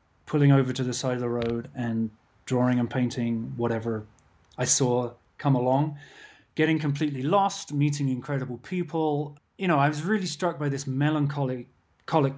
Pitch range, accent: 125-145 Hz, British